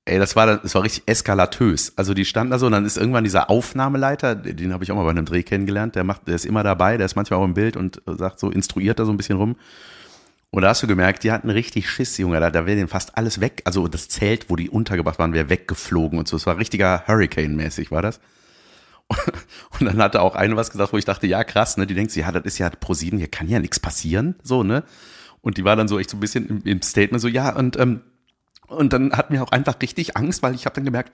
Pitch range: 90-120 Hz